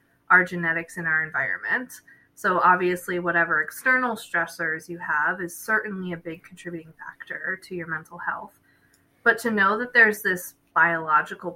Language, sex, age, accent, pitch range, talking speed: English, female, 20-39, American, 170-215 Hz, 150 wpm